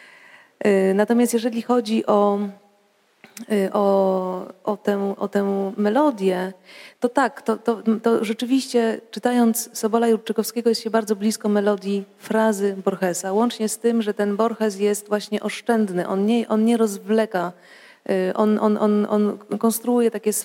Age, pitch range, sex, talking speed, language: 30-49, 190-225 Hz, female, 110 wpm, Polish